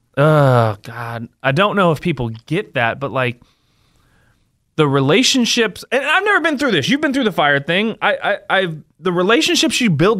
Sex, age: male, 20-39